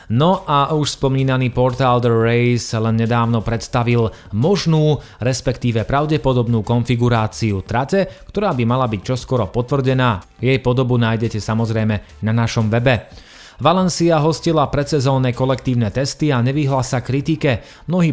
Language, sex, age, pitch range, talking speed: Slovak, male, 30-49, 115-135 Hz, 120 wpm